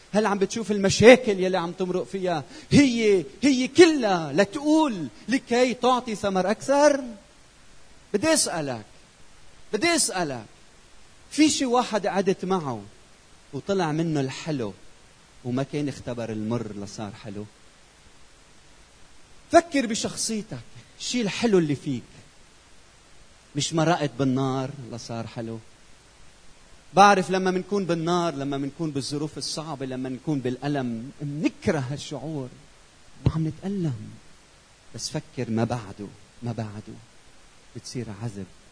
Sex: male